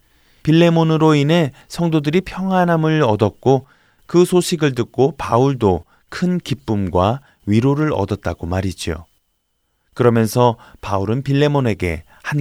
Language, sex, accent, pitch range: Korean, male, native, 100-140 Hz